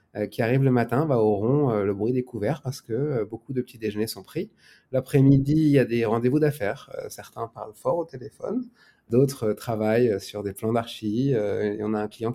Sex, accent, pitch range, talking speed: male, French, 110-140 Hz, 220 wpm